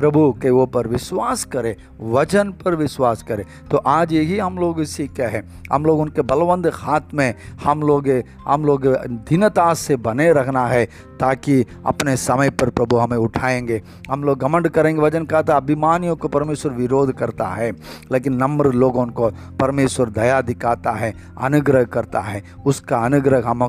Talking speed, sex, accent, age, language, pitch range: 165 wpm, male, native, 50-69, Hindi, 110-135 Hz